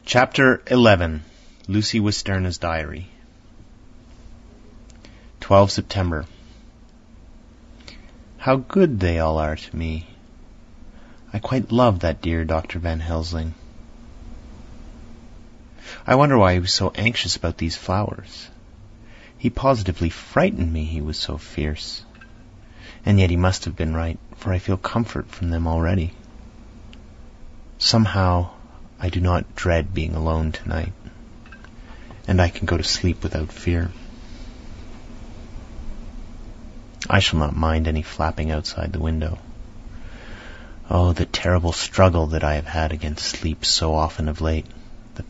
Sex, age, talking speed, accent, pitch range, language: male, 30-49, 125 wpm, American, 80-105 Hz, English